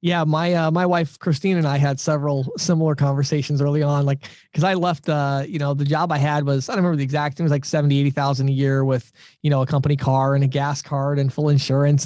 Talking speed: 260 wpm